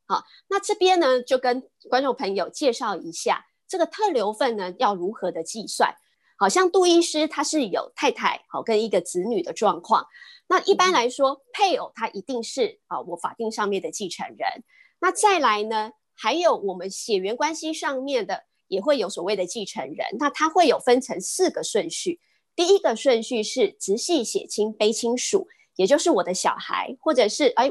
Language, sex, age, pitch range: Chinese, female, 30-49, 220-350 Hz